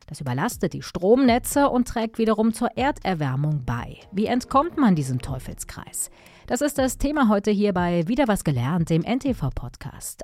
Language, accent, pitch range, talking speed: German, German, 150-235 Hz, 160 wpm